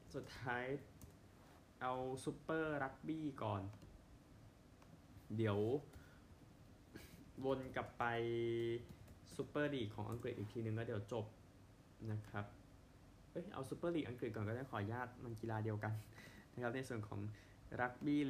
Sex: male